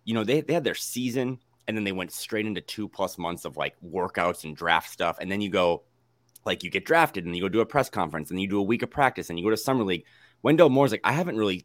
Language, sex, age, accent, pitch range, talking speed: English, male, 30-49, American, 90-115 Hz, 285 wpm